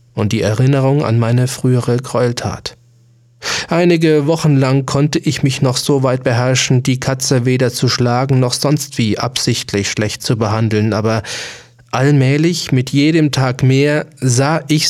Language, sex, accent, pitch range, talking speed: German, male, German, 110-135 Hz, 150 wpm